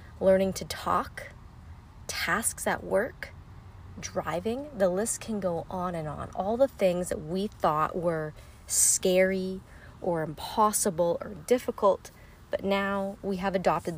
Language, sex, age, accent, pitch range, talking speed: English, female, 30-49, American, 165-220 Hz, 135 wpm